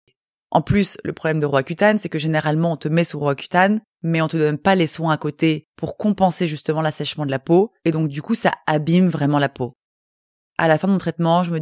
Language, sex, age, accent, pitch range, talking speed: French, female, 20-39, French, 155-190 Hz, 250 wpm